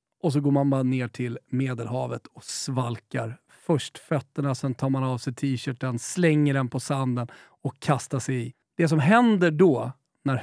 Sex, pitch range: male, 135-175 Hz